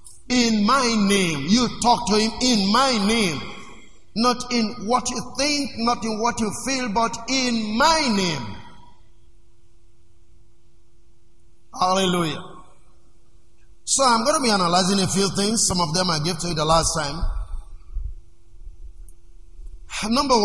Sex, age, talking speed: male, 50-69, 130 wpm